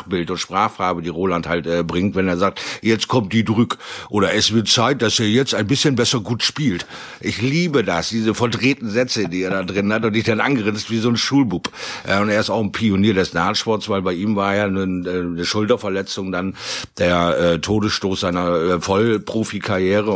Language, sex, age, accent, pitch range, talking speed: German, male, 50-69, German, 90-115 Hz, 210 wpm